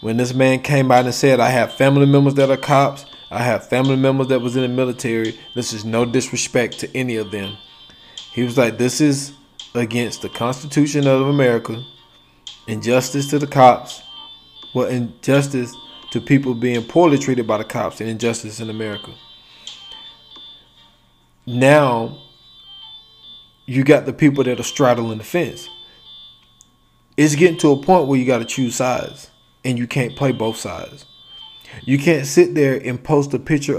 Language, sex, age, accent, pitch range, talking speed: English, male, 20-39, American, 120-140 Hz, 165 wpm